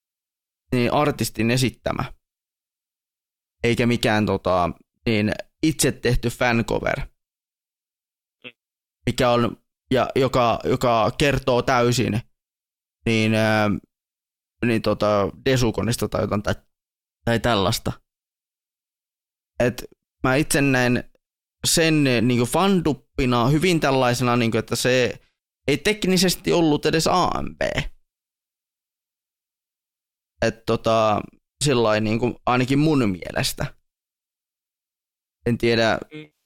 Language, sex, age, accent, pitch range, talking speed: Finnish, male, 20-39, native, 110-130 Hz, 85 wpm